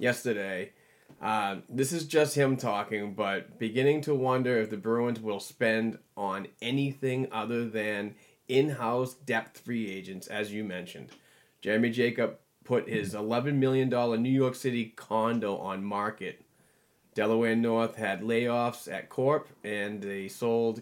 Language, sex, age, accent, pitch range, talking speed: English, male, 30-49, American, 105-130 Hz, 140 wpm